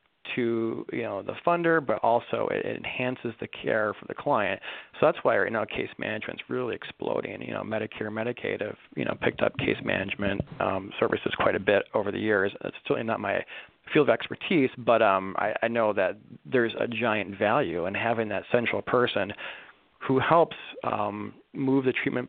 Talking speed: 190 wpm